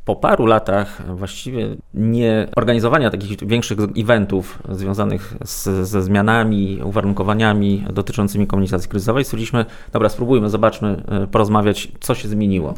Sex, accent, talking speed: male, native, 115 wpm